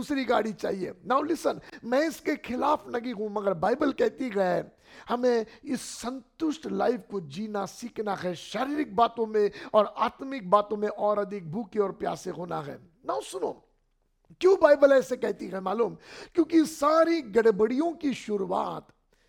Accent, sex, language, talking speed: native, male, Hindi, 145 wpm